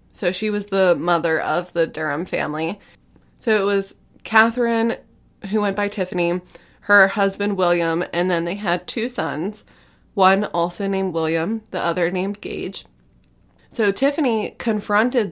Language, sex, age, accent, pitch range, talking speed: English, female, 20-39, American, 175-205 Hz, 145 wpm